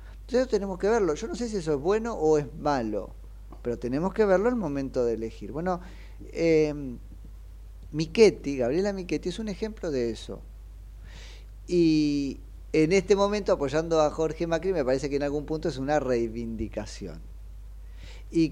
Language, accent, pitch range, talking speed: Spanish, Argentinian, 115-170 Hz, 160 wpm